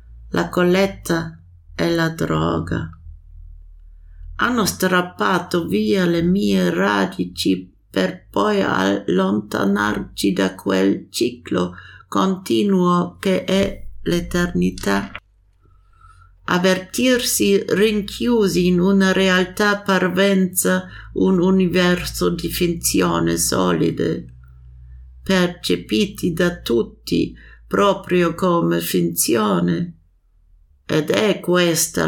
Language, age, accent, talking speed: German, 50-69, Italian, 75 wpm